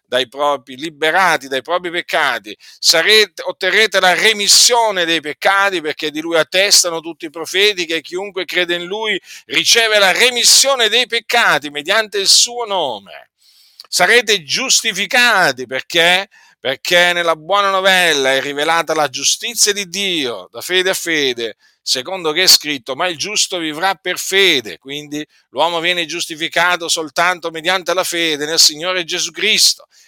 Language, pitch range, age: Italian, 150-195 Hz, 50-69